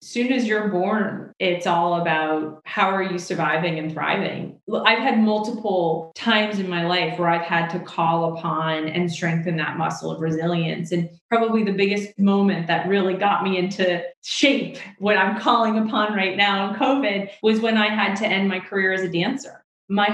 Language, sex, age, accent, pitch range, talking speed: English, female, 20-39, American, 175-210 Hz, 190 wpm